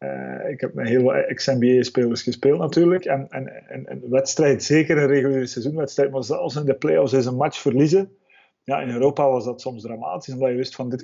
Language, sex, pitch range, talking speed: Dutch, male, 125-145 Hz, 210 wpm